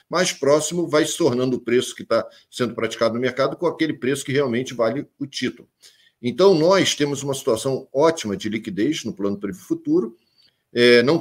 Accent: Brazilian